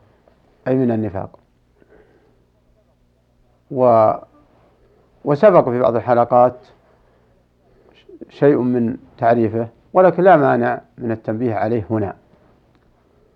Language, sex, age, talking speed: Arabic, male, 50-69, 80 wpm